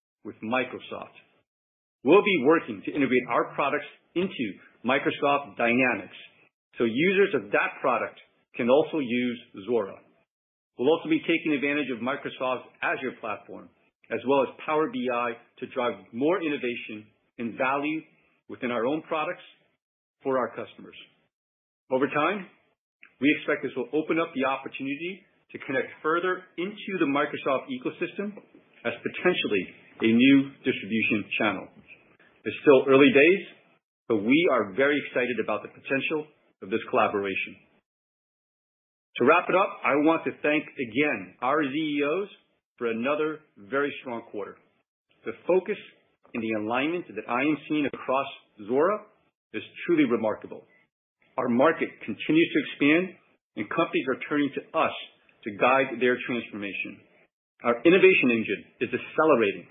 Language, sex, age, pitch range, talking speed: English, male, 40-59, 125-165 Hz, 135 wpm